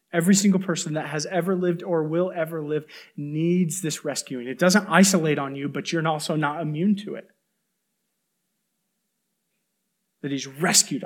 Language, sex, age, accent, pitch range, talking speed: English, male, 30-49, American, 165-200 Hz, 155 wpm